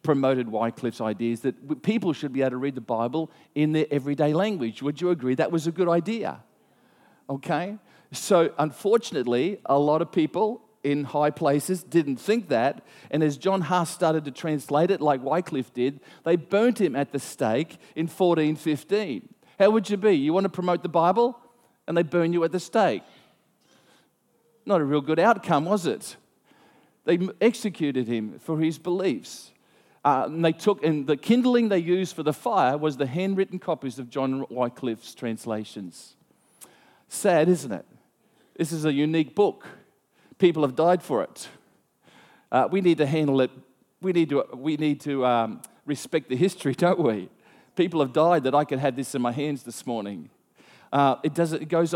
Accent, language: Australian, English